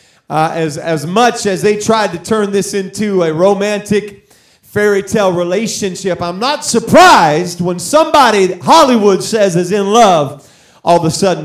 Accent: American